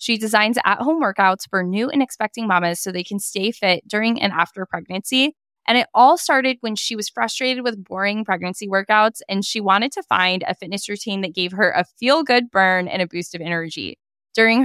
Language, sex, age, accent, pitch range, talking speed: English, female, 10-29, American, 175-225 Hz, 205 wpm